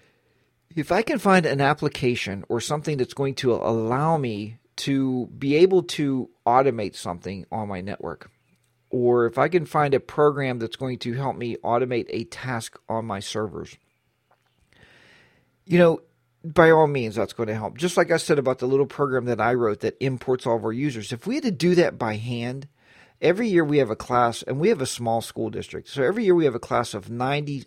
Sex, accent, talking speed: male, American, 210 wpm